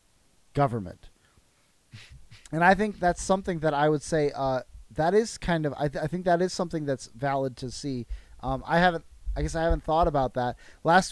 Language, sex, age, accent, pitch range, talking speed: English, male, 20-39, American, 125-165 Hz, 195 wpm